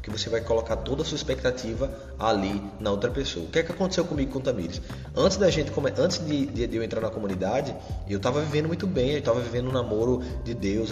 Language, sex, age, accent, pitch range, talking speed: Portuguese, male, 20-39, Brazilian, 100-140 Hz, 240 wpm